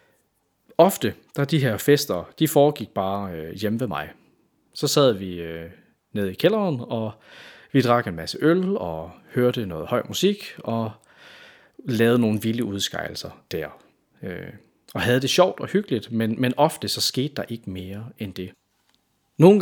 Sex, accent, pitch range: male, native, 105-150 Hz